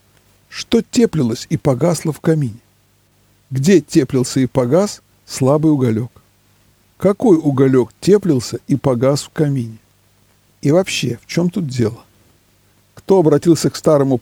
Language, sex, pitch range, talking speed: Russian, male, 110-170 Hz, 120 wpm